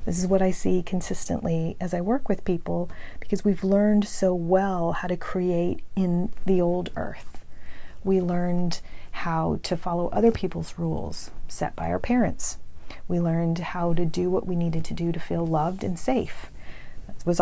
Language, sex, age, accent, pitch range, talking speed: English, female, 40-59, American, 170-190 Hz, 180 wpm